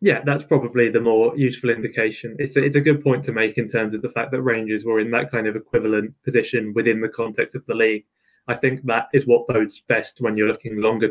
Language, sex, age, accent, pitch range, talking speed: English, male, 20-39, British, 110-130 Hz, 245 wpm